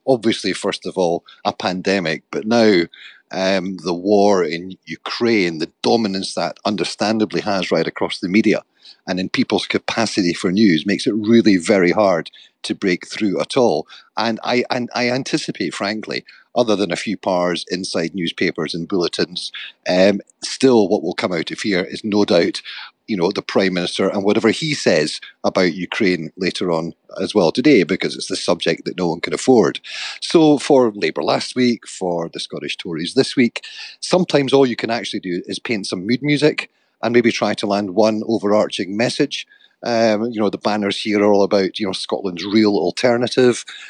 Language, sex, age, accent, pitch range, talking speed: English, male, 40-59, British, 100-125 Hz, 180 wpm